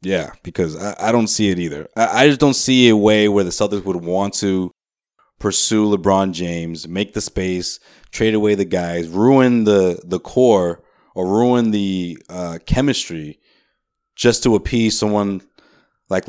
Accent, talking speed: American, 165 wpm